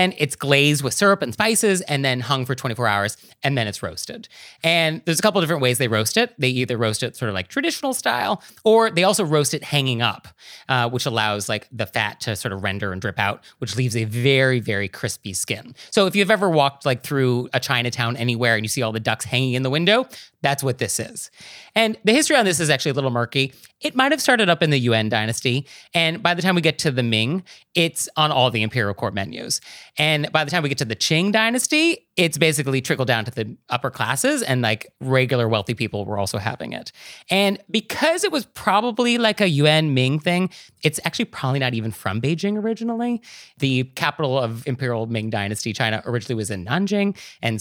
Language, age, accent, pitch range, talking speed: English, 30-49, American, 120-180 Hz, 220 wpm